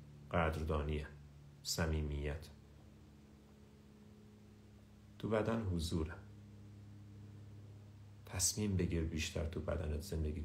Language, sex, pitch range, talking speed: Persian, male, 80-105 Hz, 55 wpm